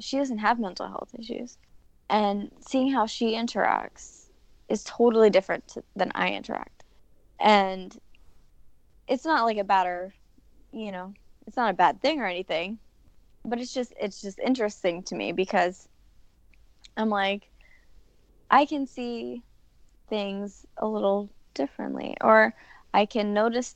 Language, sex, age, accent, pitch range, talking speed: English, female, 20-39, American, 190-230 Hz, 135 wpm